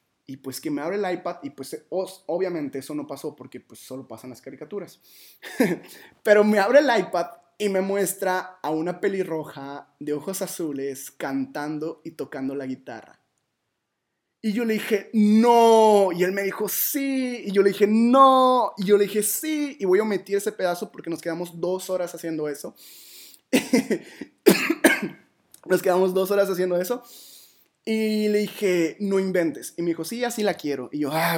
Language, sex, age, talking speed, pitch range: Spanish, male, 20-39, 180 wpm, 150-205 Hz